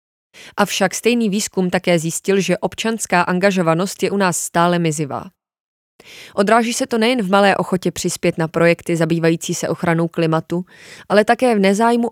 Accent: native